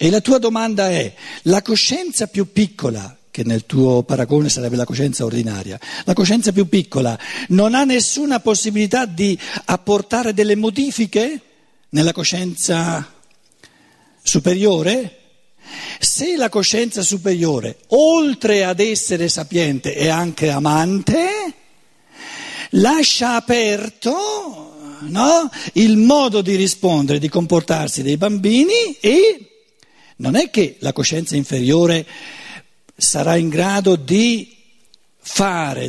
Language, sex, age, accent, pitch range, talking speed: Italian, male, 50-69, native, 150-225 Hz, 110 wpm